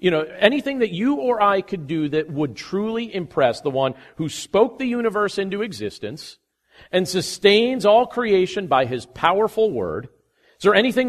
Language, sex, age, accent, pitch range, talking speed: English, male, 40-59, American, 150-210 Hz, 175 wpm